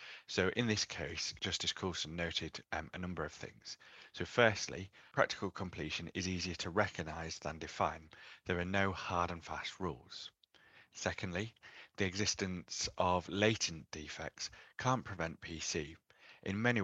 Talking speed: 145 wpm